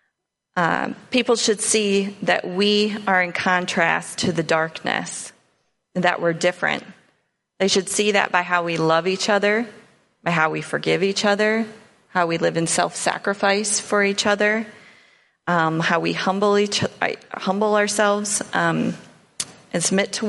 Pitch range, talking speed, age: 175-210 Hz, 155 wpm, 30-49